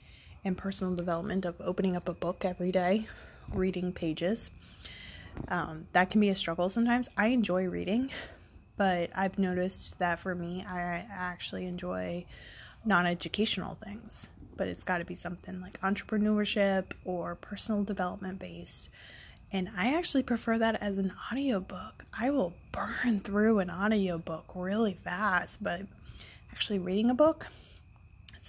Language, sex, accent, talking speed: English, female, American, 140 wpm